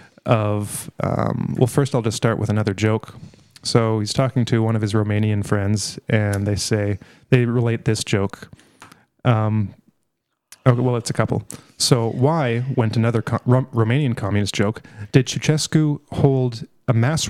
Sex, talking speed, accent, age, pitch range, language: male, 150 wpm, American, 30-49, 115-145 Hz, English